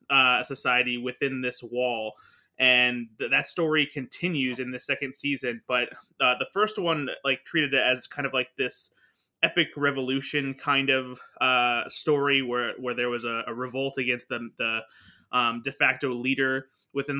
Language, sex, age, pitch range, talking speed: English, male, 20-39, 125-145 Hz, 170 wpm